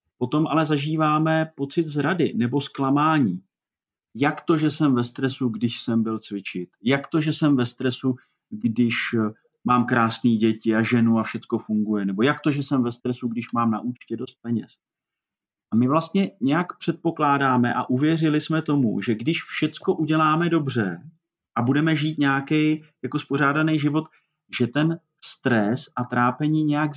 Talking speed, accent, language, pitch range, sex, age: 160 wpm, native, Czech, 120-155 Hz, male, 40-59